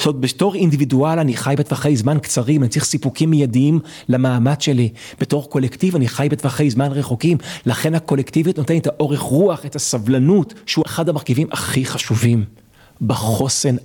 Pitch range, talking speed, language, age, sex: 125-160 Hz, 155 wpm, Hebrew, 30-49, male